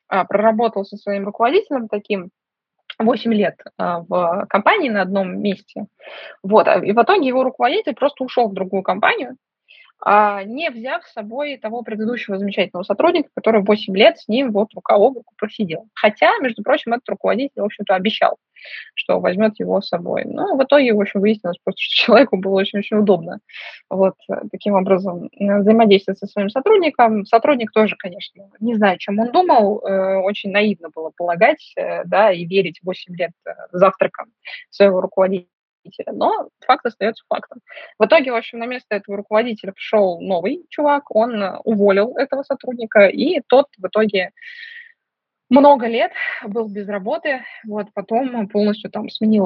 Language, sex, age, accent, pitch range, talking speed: Russian, female, 20-39, native, 195-255 Hz, 150 wpm